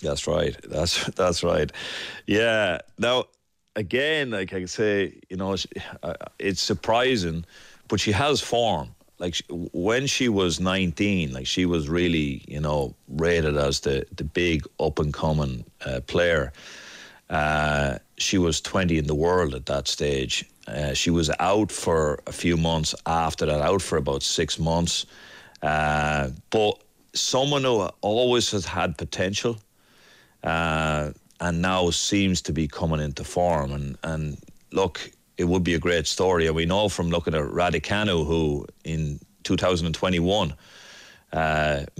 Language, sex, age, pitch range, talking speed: English, male, 40-59, 75-90 Hz, 145 wpm